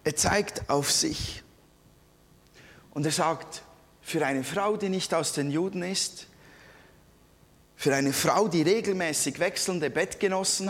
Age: 30-49